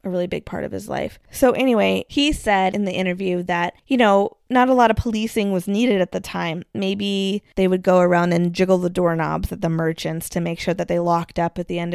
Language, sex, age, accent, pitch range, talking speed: English, female, 20-39, American, 175-205 Hz, 245 wpm